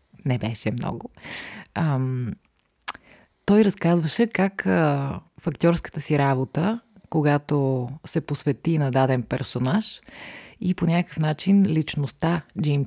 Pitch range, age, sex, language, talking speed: 145-180 Hz, 30-49, female, Bulgarian, 110 wpm